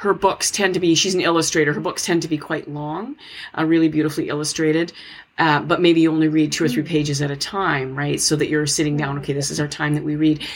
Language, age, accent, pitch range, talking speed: English, 40-59, American, 150-180 Hz, 260 wpm